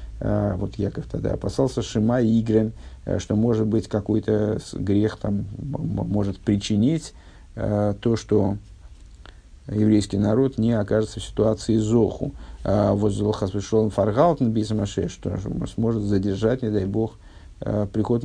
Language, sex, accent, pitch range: Russian, male, native, 100-135 Hz